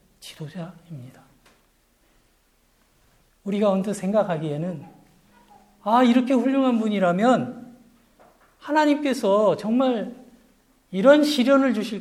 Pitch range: 180-245 Hz